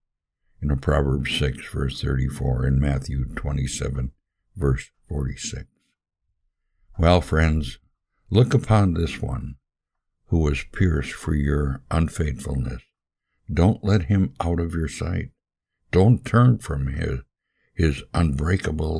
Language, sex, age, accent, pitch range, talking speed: English, male, 60-79, American, 70-85 Hz, 110 wpm